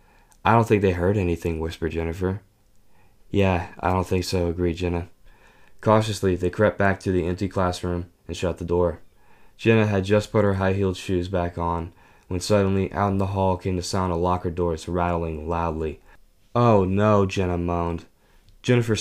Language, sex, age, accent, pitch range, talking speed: English, male, 10-29, American, 85-100 Hz, 175 wpm